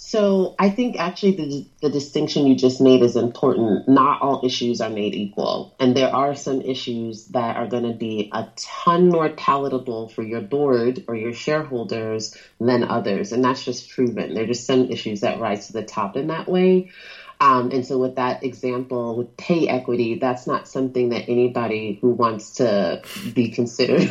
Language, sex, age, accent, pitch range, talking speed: English, female, 30-49, American, 125-160 Hz, 190 wpm